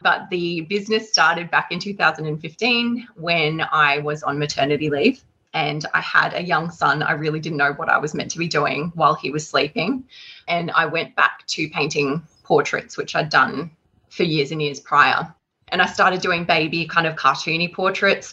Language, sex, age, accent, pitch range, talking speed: English, female, 20-39, Australian, 155-195 Hz, 190 wpm